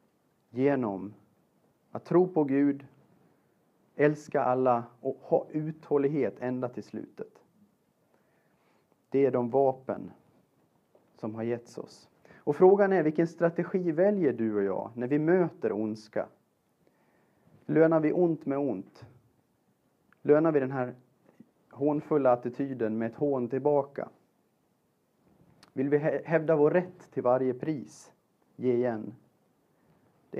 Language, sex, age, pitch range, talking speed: Swedish, male, 30-49, 120-155 Hz, 120 wpm